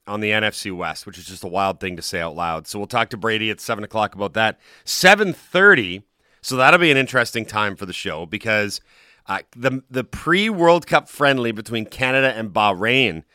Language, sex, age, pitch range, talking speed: English, male, 40-59, 105-135 Hz, 200 wpm